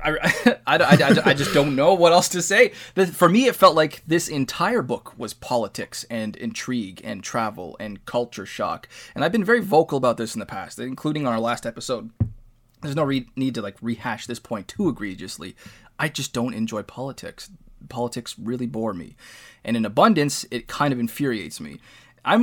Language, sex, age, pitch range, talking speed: English, male, 20-39, 115-150 Hz, 195 wpm